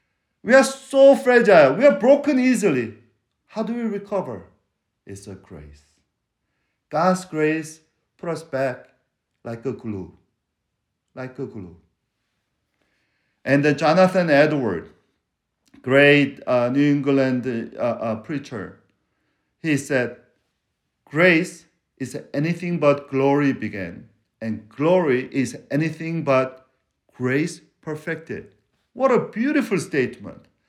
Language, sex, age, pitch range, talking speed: English, male, 50-69, 135-225 Hz, 110 wpm